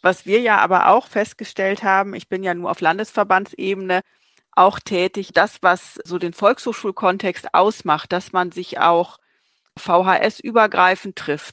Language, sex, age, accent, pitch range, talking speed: German, female, 30-49, German, 175-210 Hz, 140 wpm